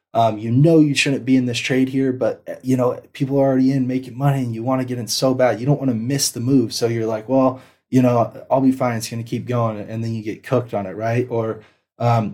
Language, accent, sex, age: English, American, male, 20-39